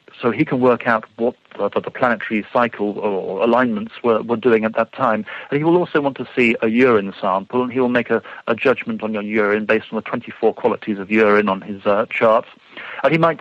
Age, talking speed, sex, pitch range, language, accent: 50-69, 235 wpm, male, 105-130 Hz, English, British